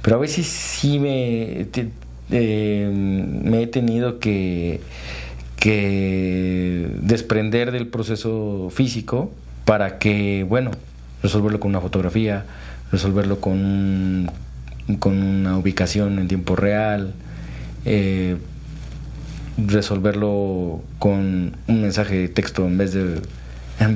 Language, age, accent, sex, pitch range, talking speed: Spanish, 40-59, Mexican, male, 85-110 Hz, 105 wpm